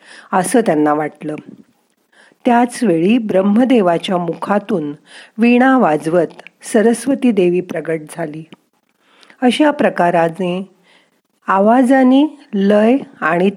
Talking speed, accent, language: 60 wpm, native, Marathi